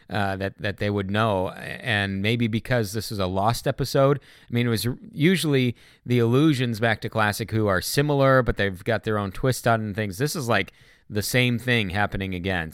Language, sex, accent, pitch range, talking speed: English, male, American, 105-135 Hz, 210 wpm